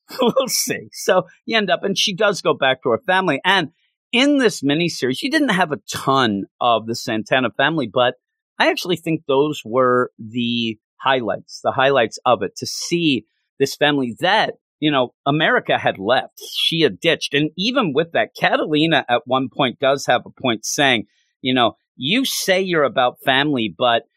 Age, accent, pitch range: 40-59, American, 115-175 Hz